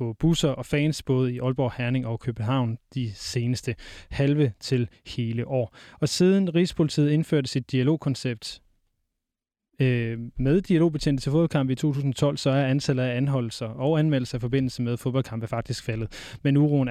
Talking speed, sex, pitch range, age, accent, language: 150 wpm, male, 125-150 Hz, 20-39, native, Danish